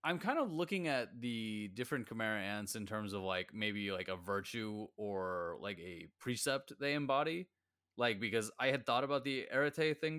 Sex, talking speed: male, 190 wpm